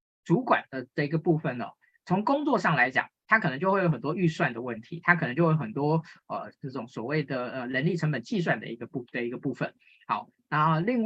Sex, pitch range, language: male, 130-175 Hz, Chinese